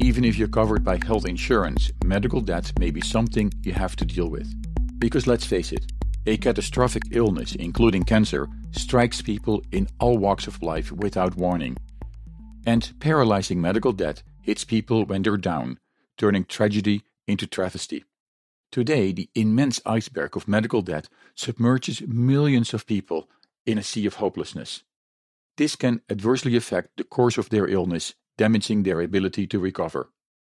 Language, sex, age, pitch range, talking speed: English, male, 50-69, 95-120 Hz, 155 wpm